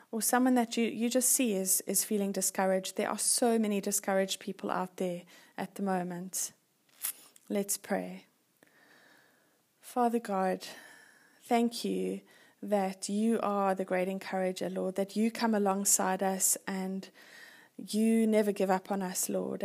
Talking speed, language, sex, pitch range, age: 145 wpm, English, female, 195-220 Hz, 20-39